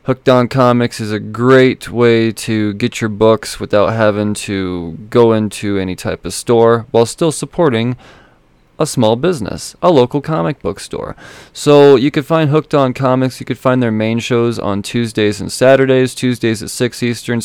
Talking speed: 180 wpm